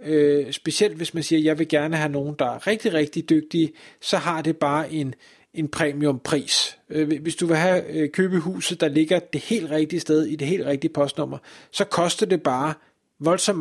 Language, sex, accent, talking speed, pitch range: Danish, male, native, 205 wpm, 150-185 Hz